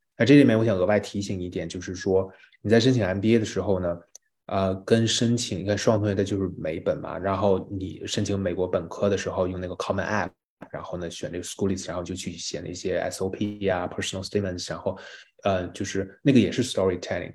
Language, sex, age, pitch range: Chinese, male, 20-39, 95-105 Hz